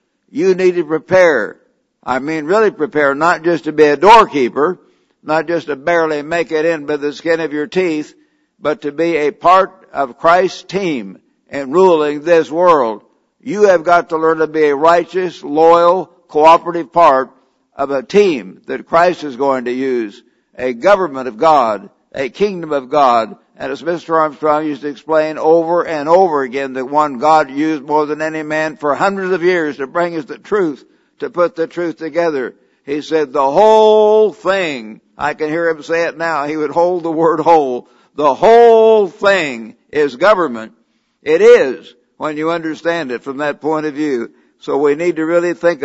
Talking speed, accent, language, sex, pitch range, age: 185 wpm, American, English, male, 150-175 Hz, 60-79